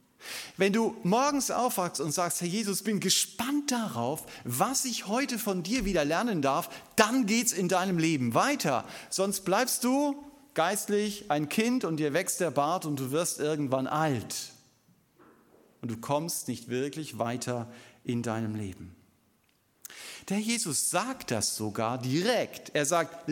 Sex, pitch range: male, 125-205 Hz